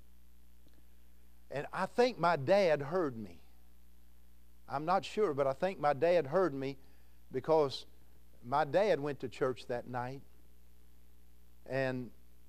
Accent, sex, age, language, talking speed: American, male, 50-69, English, 125 wpm